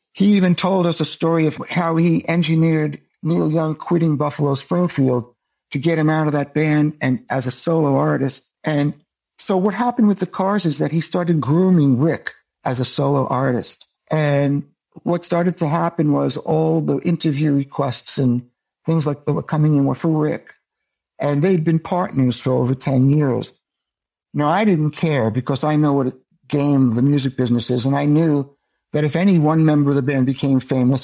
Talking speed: 190 wpm